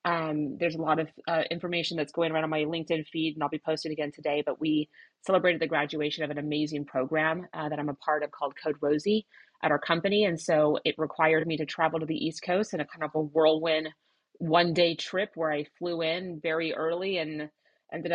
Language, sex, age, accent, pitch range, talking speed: English, female, 30-49, American, 150-170 Hz, 230 wpm